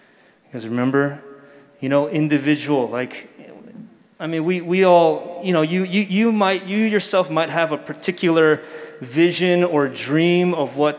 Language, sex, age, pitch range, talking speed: English, male, 30-49, 140-175 Hz, 155 wpm